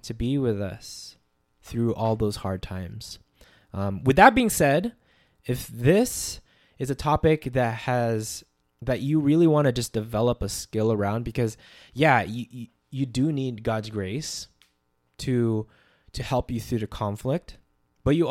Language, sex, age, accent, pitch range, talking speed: English, male, 20-39, American, 110-145 Hz, 155 wpm